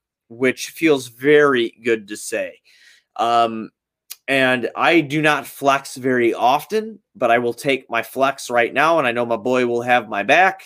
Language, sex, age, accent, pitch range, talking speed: English, male, 30-49, American, 115-160 Hz, 175 wpm